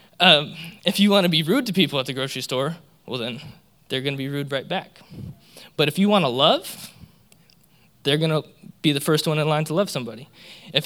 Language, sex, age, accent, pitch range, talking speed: English, male, 20-39, American, 145-180 Hz, 225 wpm